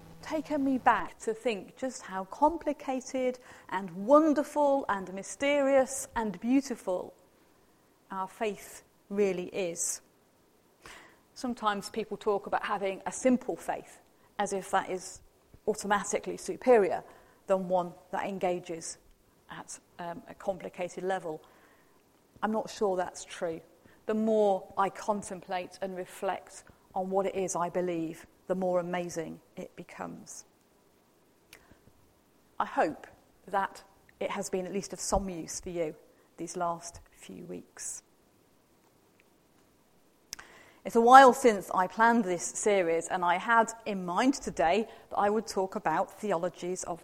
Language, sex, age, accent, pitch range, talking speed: English, female, 40-59, British, 180-225 Hz, 130 wpm